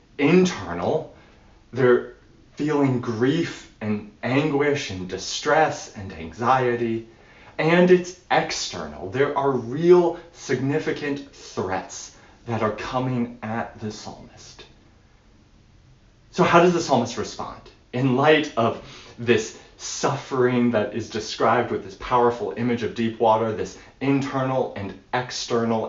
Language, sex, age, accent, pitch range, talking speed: English, male, 30-49, American, 105-140 Hz, 115 wpm